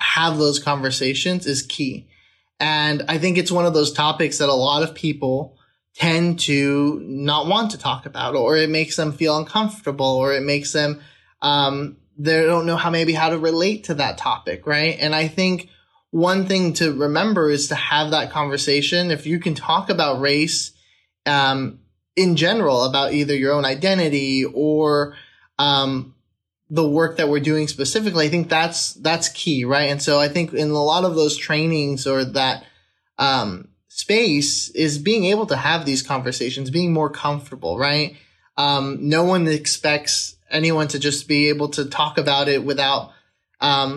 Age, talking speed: 20-39, 175 wpm